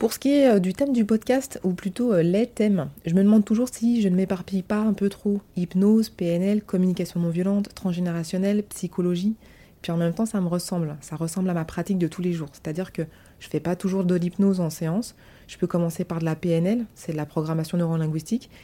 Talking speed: 230 wpm